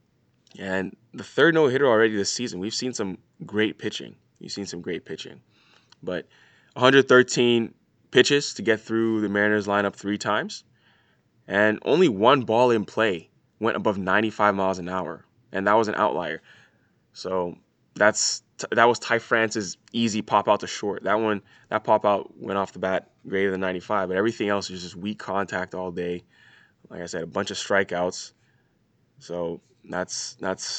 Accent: American